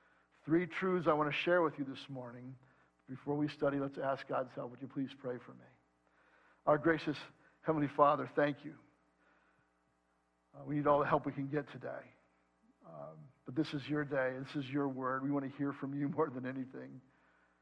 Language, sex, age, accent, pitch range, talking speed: English, male, 60-79, American, 120-150 Hz, 200 wpm